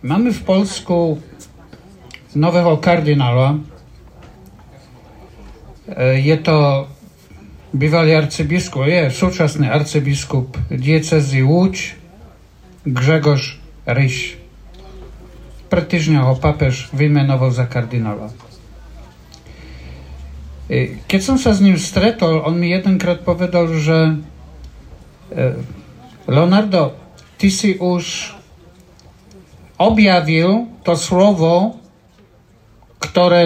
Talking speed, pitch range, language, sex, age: 70 wpm, 135-190 Hz, Slovak, male, 50-69